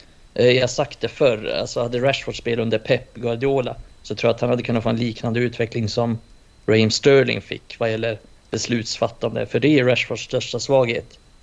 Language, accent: Swedish, native